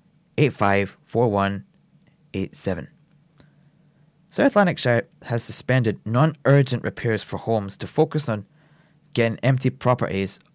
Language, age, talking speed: English, 30-49, 120 wpm